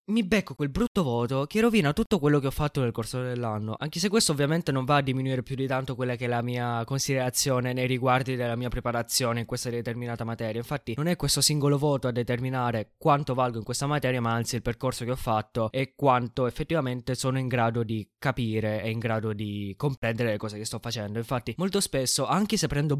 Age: 20-39